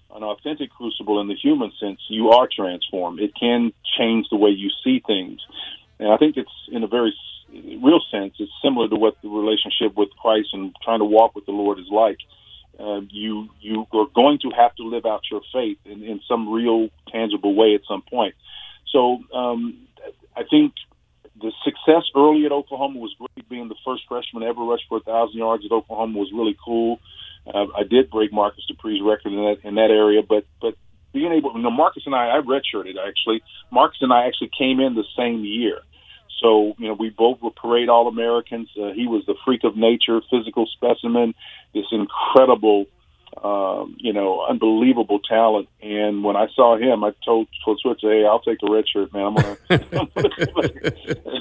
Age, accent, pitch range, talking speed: 40-59, American, 105-125 Hz, 195 wpm